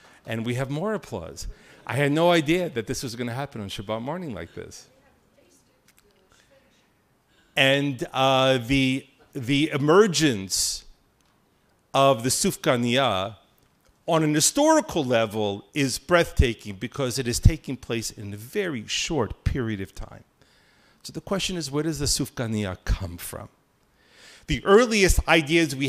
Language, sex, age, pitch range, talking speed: English, male, 50-69, 120-170 Hz, 140 wpm